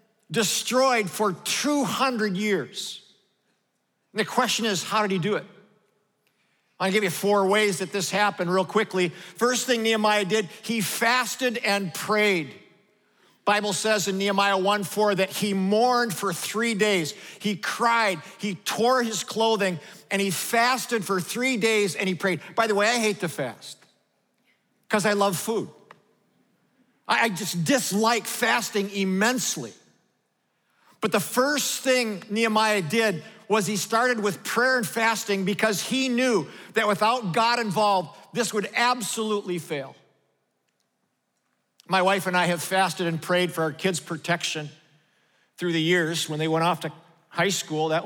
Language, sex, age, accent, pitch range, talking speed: English, male, 50-69, American, 175-220 Hz, 150 wpm